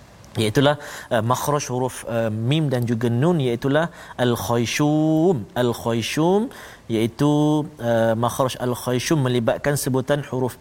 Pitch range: 120-170 Hz